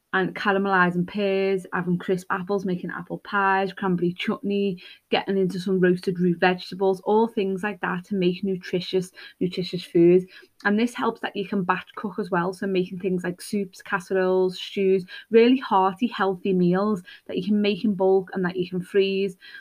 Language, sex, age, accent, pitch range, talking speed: English, female, 20-39, British, 180-200 Hz, 170 wpm